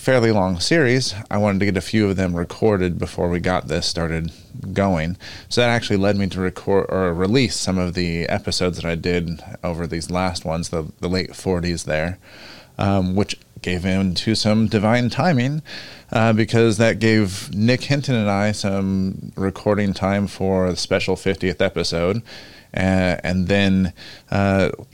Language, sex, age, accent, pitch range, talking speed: English, male, 30-49, American, 95-115 Hz, 170 wpm